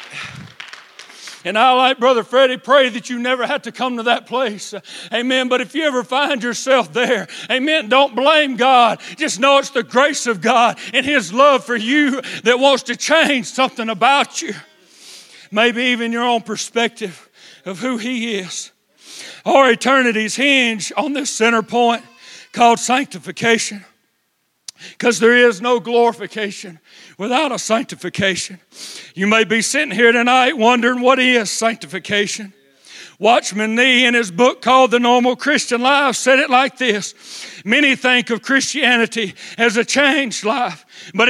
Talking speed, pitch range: 155 wpm, 225-260 Hz